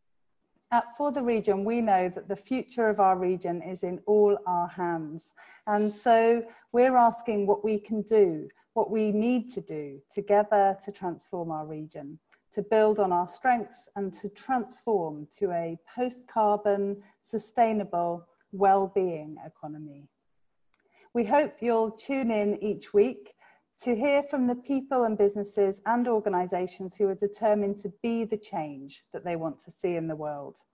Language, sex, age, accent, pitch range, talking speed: English, female, 40-59, British, 175-220 Hz, 155 wpm